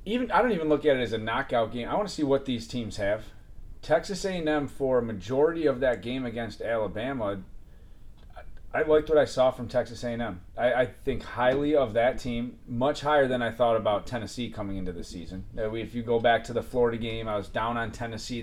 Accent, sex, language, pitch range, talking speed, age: American, male, English, 110-130 Hz, 225 wpm, 30-49